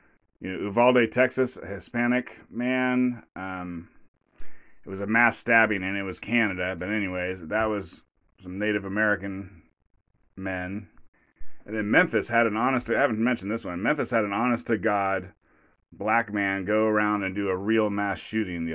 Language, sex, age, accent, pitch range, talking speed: English, male, 30-49, American, 95-115 Hz, 170 wpm